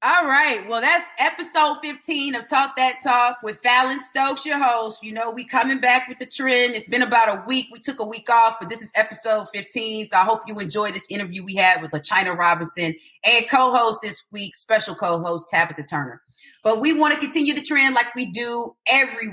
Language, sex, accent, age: English, female, American, 30-49